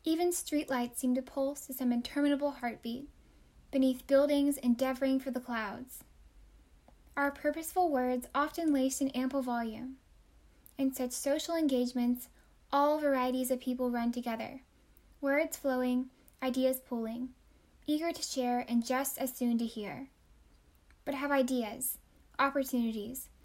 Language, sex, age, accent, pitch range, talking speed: English, female, 10-29, American, 240-275 Hz, 130 wpm